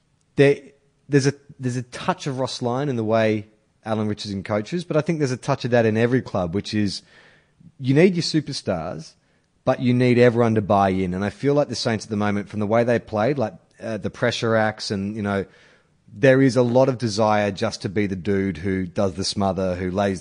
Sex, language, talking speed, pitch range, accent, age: male, English, 230 wpm, 105-125 Hz, Australian, 30-49